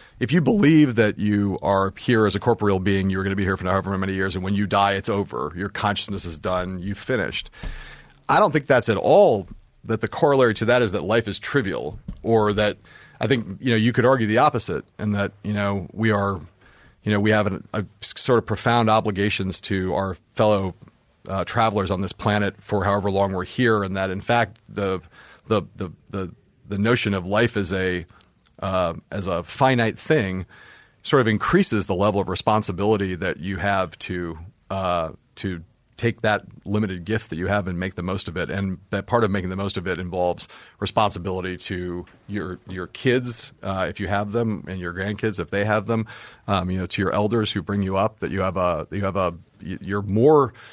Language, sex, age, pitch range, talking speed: English, male, 40-59, 95-110 Hz, 205 wpm